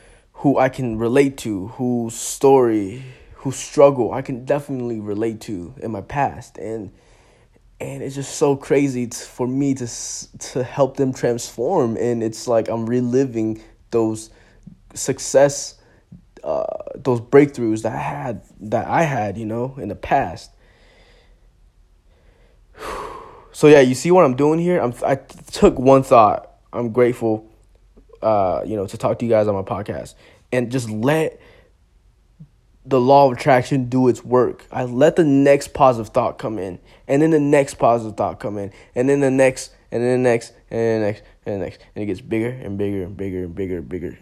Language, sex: English, male